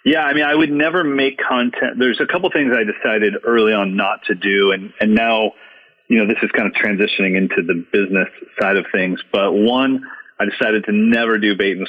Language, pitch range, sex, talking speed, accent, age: English, 105-140 Hz, male, 220 wpm, American, 30-49